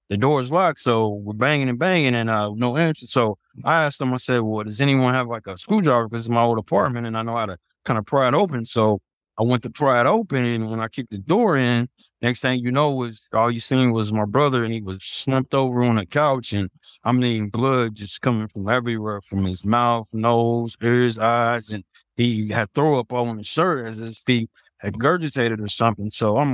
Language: English